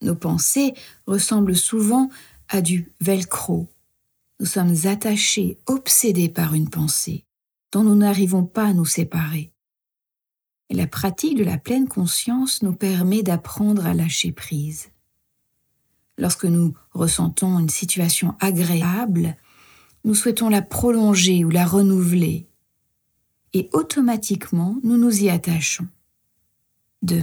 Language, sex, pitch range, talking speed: French, female, 170-210 Hz, 115 wpm